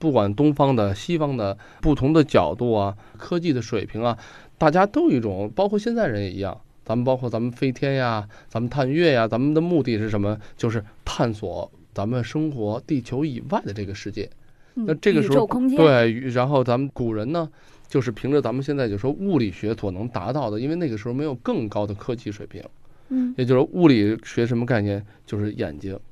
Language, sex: Chinese, male